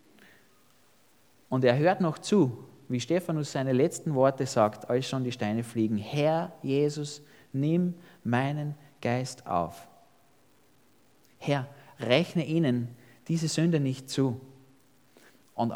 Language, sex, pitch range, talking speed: German, male, 120-190 Hz, 115 wpm